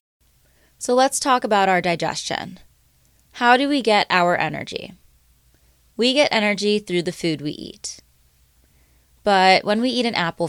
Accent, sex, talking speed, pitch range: American, female, 150 wpm, 155-200 Hz